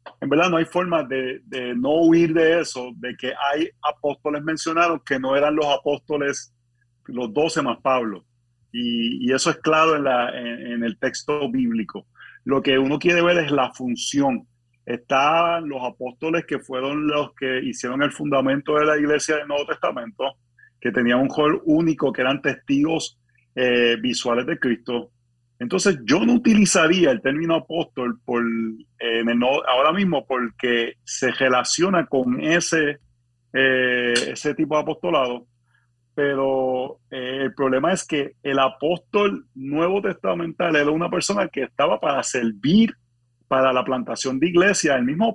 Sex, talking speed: male, 160 wpm